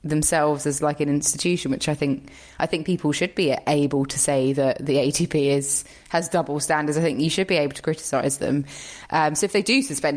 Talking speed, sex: 225 wpm, female